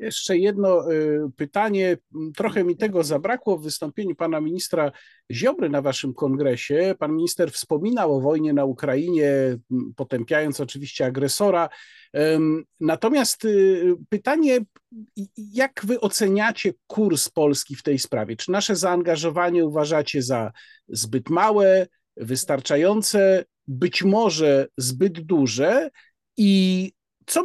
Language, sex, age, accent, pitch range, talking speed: Polish, male, 50-69, native, 150-215 Hz, 105 wpm